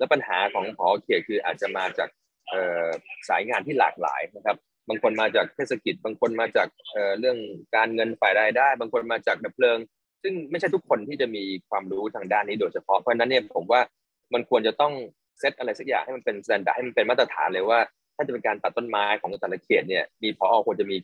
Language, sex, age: Thai, male, 20-39